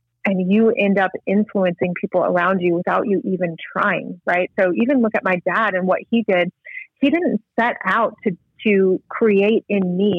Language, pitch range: English, 185-230 Hz